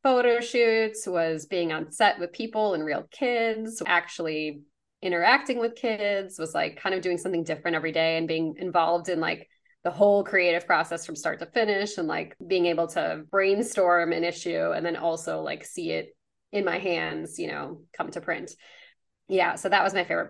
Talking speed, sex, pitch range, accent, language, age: 190 wpm, female, 160-195 Hz, American, English, 20-39